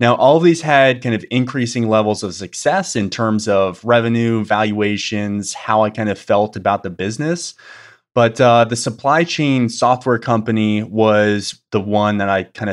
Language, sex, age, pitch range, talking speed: English, male, 20-39, 105-130 Hz, 175 wpm